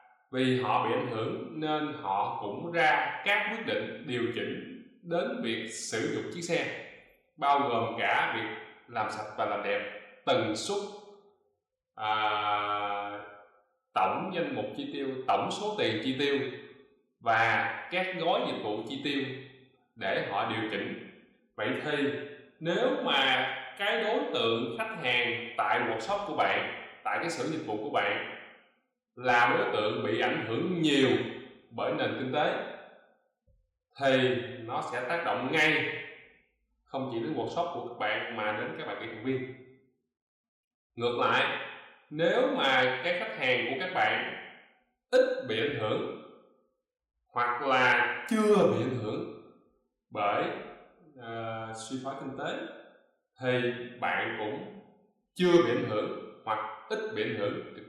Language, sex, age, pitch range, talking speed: Vietnamese, male, 20-39, 120-175 Hz, 150 wpm